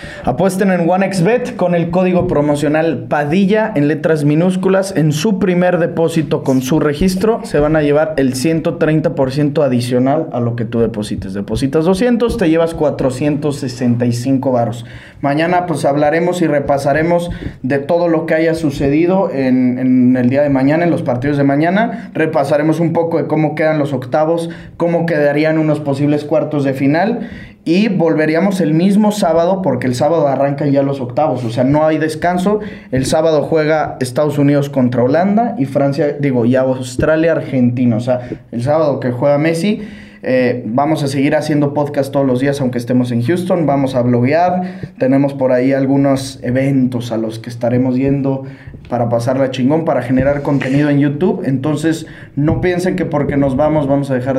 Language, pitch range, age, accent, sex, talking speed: English, 135-165 Hz, 20-39, Mexican, male, 170 wpm